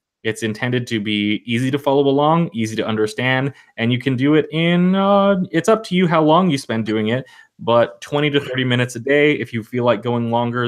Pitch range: 110-140 Hz